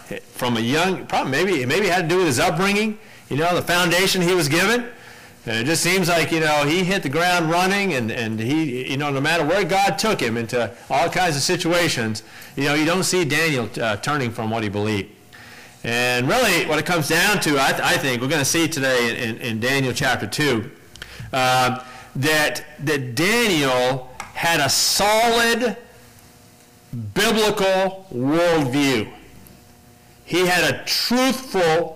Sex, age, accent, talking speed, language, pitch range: male, 40-59, American, 175 wpm, English, 125-190 Hz